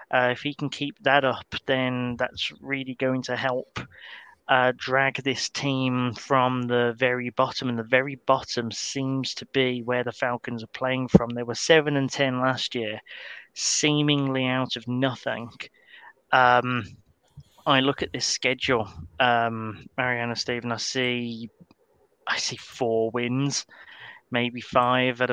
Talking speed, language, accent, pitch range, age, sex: 150 wpm, English, British, 120-140 Hz, 30-49, male